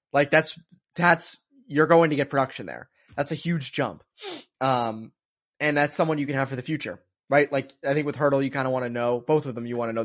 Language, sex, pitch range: English, male, 120-150 Hz